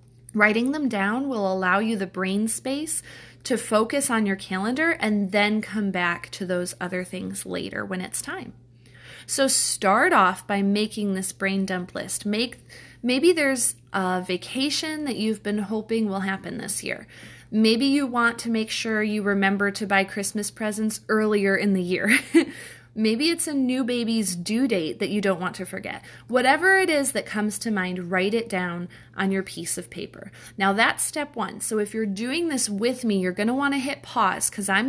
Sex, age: female, 30-49